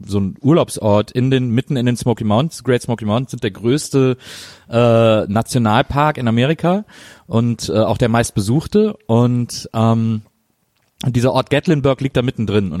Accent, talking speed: German, 160 wpm